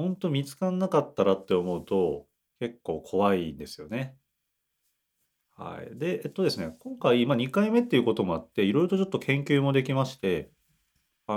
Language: Japanese